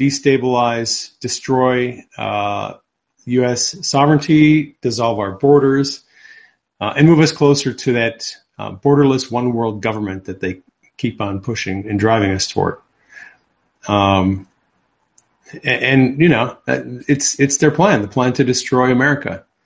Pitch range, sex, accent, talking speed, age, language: 115-145 Hz, male, American, 130 wpm, 40-59, English